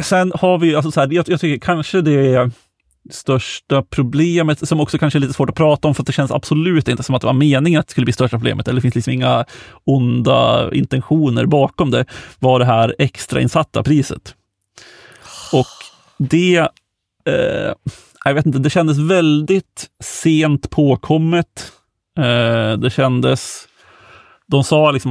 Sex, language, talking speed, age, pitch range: male, Swedish, 170 wpm, 30-49, 120-150 Hz